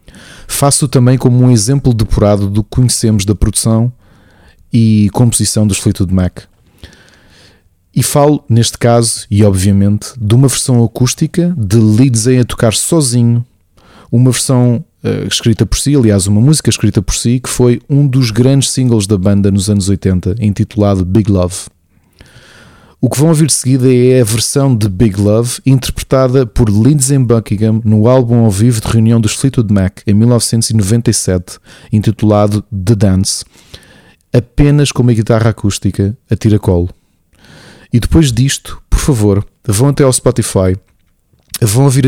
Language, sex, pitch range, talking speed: Portuguese, male, 100-125 Hz, 150 wpm